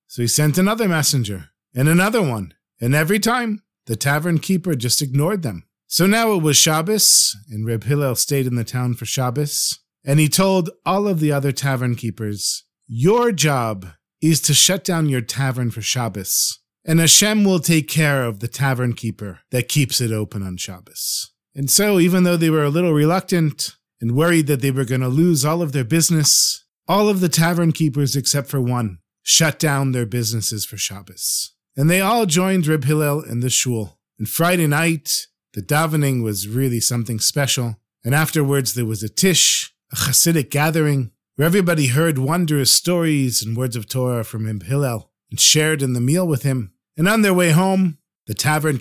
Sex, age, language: male, 40-59, English